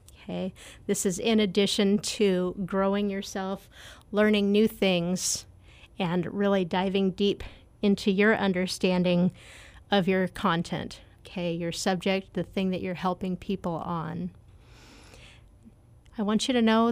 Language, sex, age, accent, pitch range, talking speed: English, female, 30-49, American, 180-215 Hz, 130 wpm